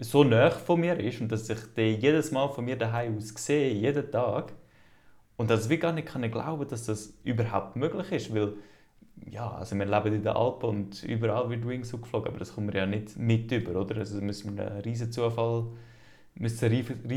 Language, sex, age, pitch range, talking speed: German, male, 20-39, 110-125 Hz, 190 wpm